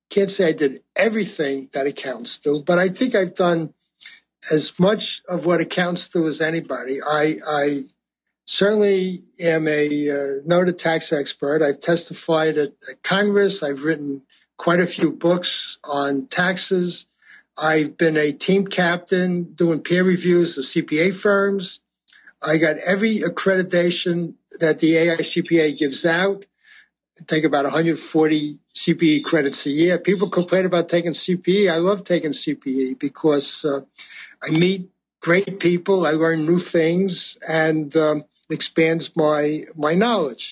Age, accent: 60-79, American